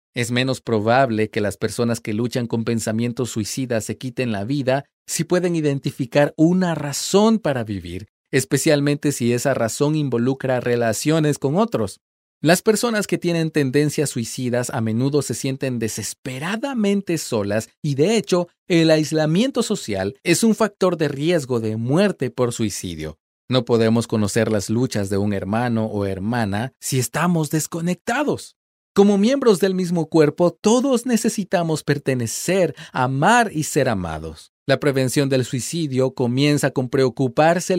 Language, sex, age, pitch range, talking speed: Spanish, male, 40-59, 115-175 Hz, 140 wpm